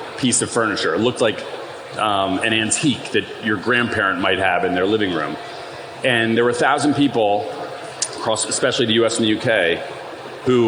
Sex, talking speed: male, 180 wpm